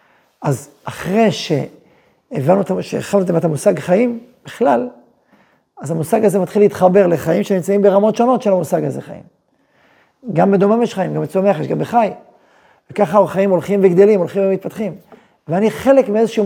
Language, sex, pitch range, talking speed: Hebrew, male, 165-210 Hz, 140 wpm